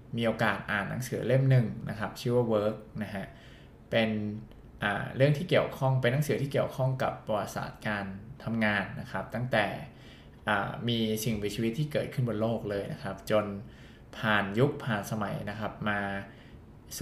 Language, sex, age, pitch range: Thai, male, 20-39, 105-125 Hz